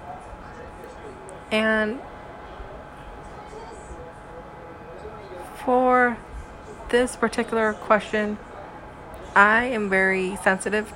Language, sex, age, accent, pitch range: English, female, 20-39, American, 185-220 Hz